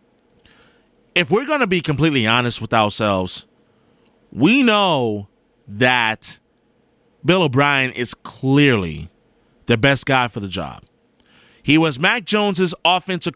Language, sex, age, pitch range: English, male, 30-49, 125-180 Hz